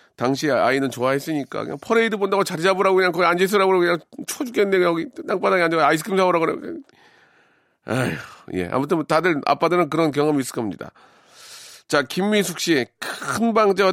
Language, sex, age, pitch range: Korean, male, 40-59, 130-185 Hz